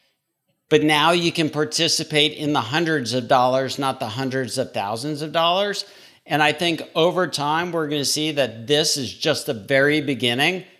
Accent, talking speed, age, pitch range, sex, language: American, 185 wpm, 50-69, 140-175 Hz, male, English